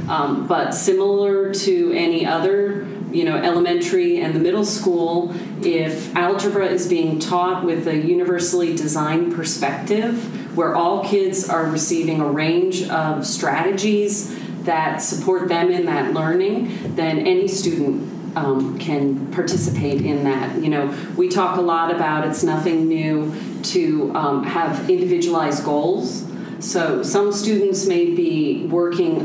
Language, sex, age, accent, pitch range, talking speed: English, female, 40-59, American, 155-195 Hz, 135 wpm